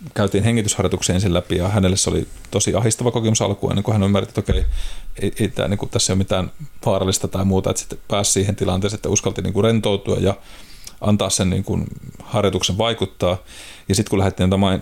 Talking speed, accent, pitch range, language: 180 wpm, native, 95-105 Hz, Finnish